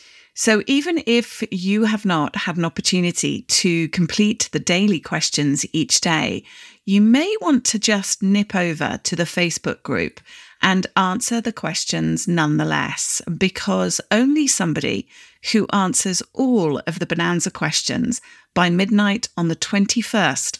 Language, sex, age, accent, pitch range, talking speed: English, female, 40-59, British, 165-220 Hz, 135 wpm